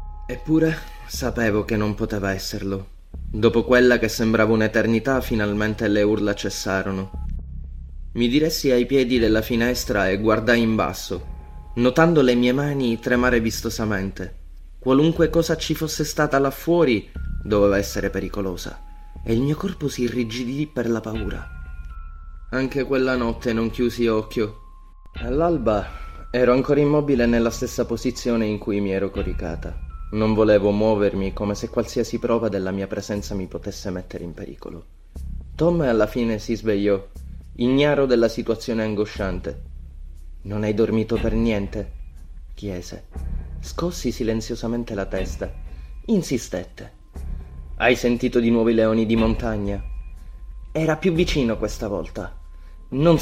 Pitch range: 90-120 Hz